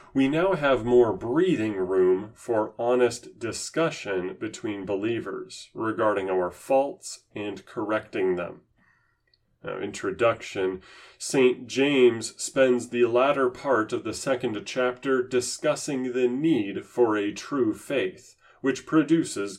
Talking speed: 115 wpm